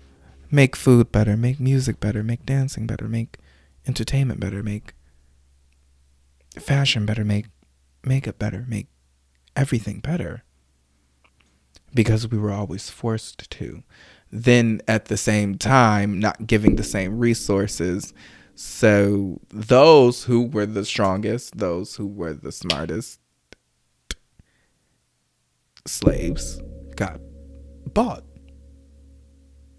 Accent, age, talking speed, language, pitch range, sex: American, 20-39, 105 wpm, English, 80-115 Hz, male